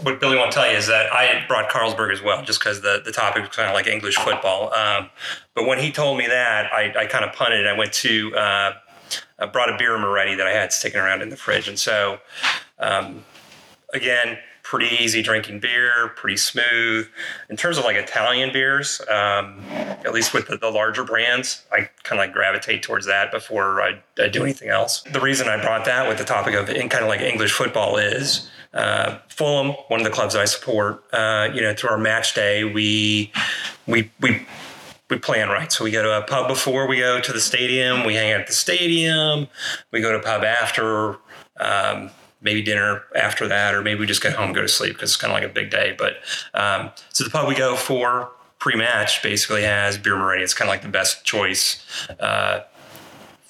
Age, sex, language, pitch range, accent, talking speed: 30-49, male, English, 105-130 Hz, American, 215 wpm